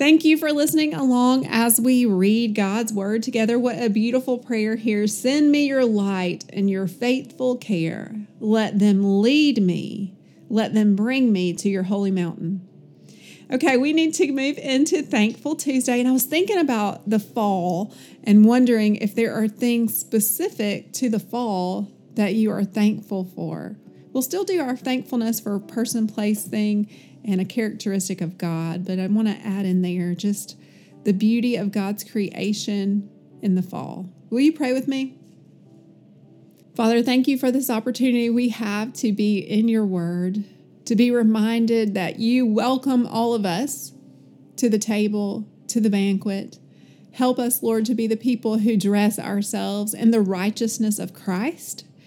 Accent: American